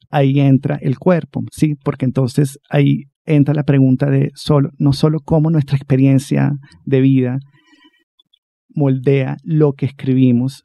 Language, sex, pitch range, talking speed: Spanish, male, 130-155 Hz, 135 wpm